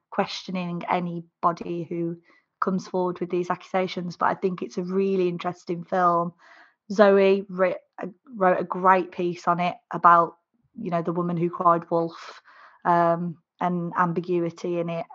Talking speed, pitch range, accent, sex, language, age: 145 wpm, 175-195 Hz, British, female, English, 20-39